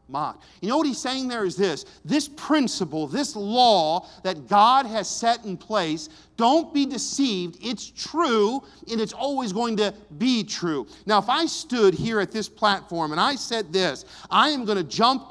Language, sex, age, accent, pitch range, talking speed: English, male, 50-69, American, 165-230 Hz, 185 wpm